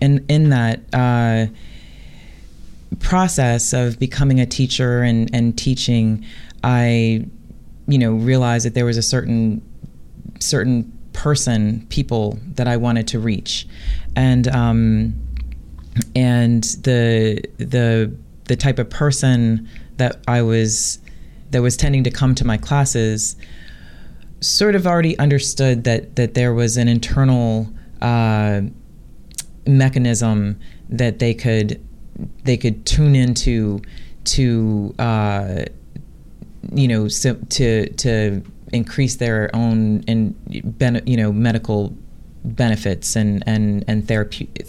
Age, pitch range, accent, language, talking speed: 30-49, 110-125 Hz, American, English, 115 wpm